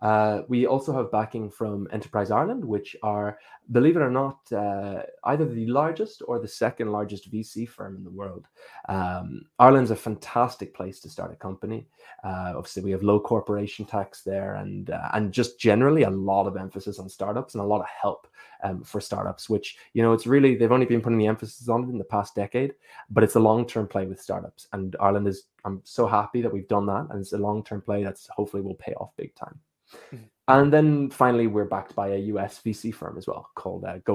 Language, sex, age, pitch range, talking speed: English, male, 20-39, 100-120 Hz, 220 wpm